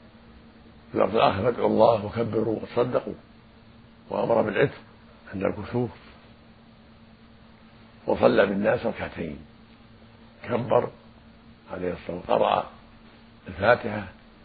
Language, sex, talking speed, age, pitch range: Arabic, male, 60 wpm, 60-79, 110-115 Hz